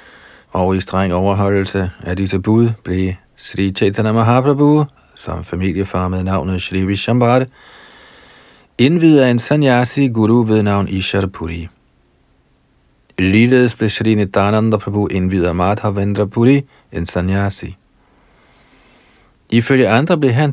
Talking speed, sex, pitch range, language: 115 wpm, male, 90-115 Hz, Danish